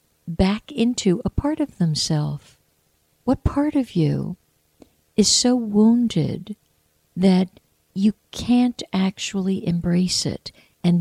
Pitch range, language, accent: 140-195 Hz, English, American